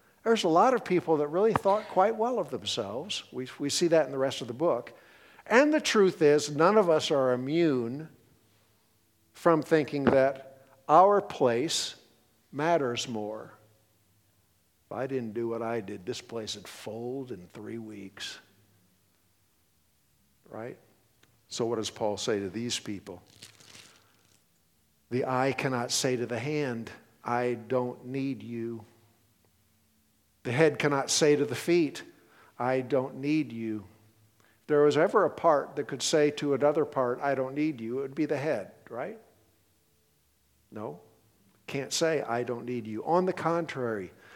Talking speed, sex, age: 155 wpm, male, 50-69